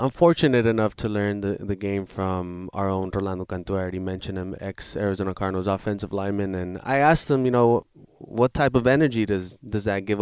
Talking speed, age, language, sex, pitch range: 205 wpm, 20-39, English, male, 95-120 Hz